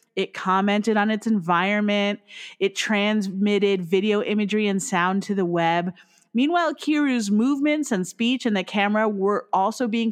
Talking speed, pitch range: 150 wpm, 175-225 Hz